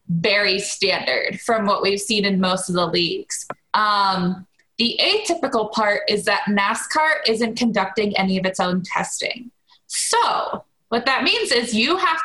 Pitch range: 190-230 Hz